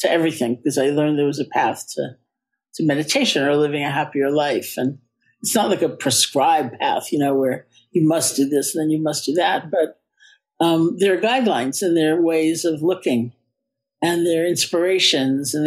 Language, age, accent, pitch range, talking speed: English, 60-79, American, 145-180 Hz, 205 wpm